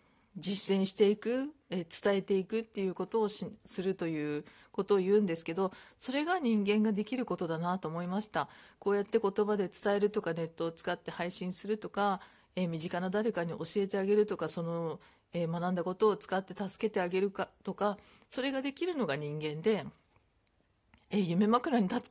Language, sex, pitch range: Japanese, female, 170-225 Hz